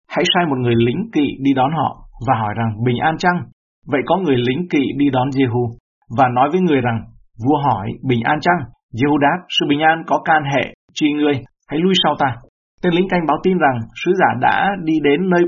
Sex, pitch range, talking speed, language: male, 120-155 Hz, 230 wpm, Vietnamese